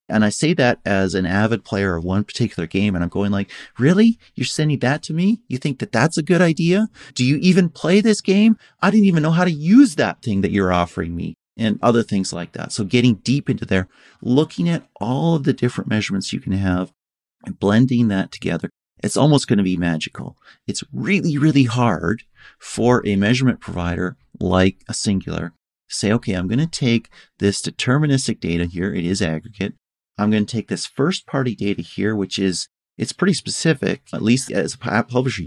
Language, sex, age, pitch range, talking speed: English, male, 30-49, 100-140 Hz, 205 wpm